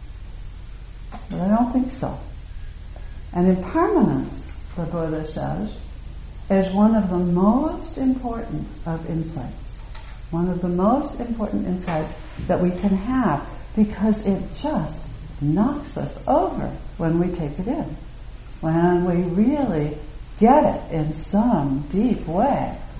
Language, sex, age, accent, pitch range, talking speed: English, female, 60-79, American, 140-200 Hz, 125 wpm